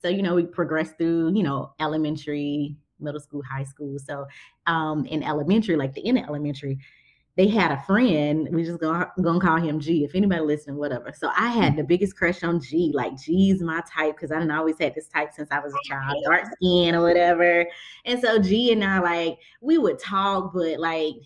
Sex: female